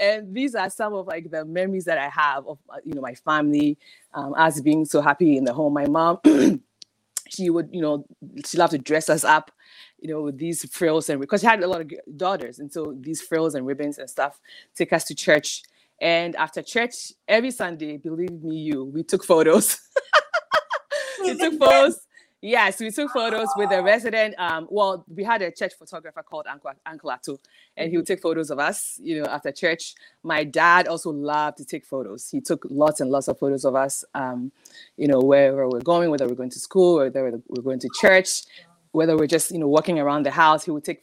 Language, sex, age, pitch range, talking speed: English, female, 20-39, 150-195 Hz, 220 wpm